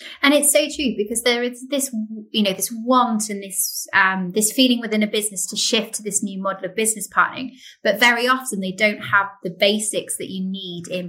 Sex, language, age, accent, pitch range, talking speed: female, English, 20-39, British, 190-230 Hz, 220 wpm